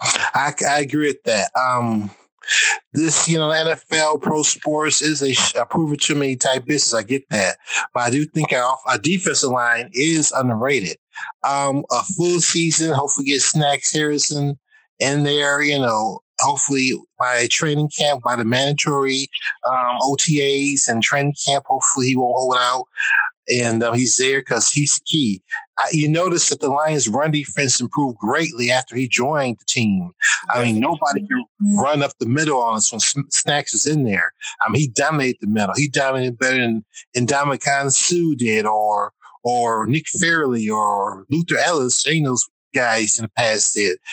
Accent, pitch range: American, 125-155 Hz